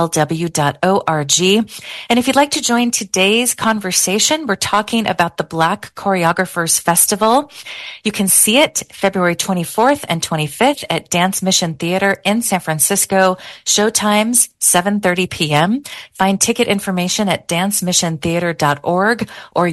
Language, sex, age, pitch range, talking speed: English, female, 40-59, 155-200 Hz, 120 wpm